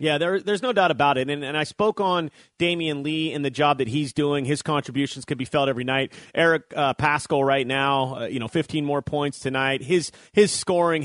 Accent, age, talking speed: American, 30-49, 230 wpm